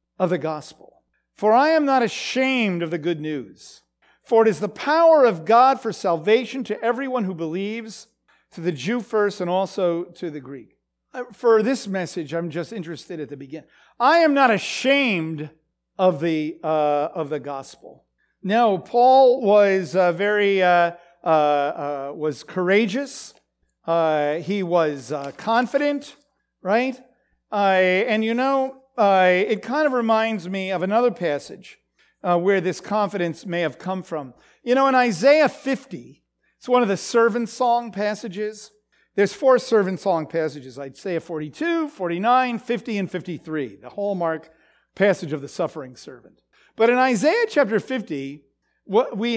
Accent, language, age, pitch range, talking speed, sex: American, English, 50-69, 170-240 Hz, 155 wpm, male